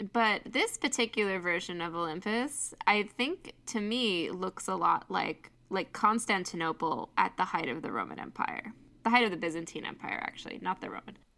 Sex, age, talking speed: female, 10-29, 175 wpm